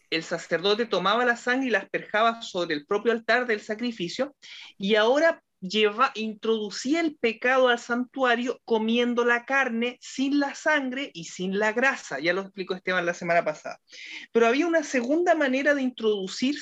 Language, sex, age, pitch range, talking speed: Spanish, male, 30-49, 190-255 Hz, 165 wpm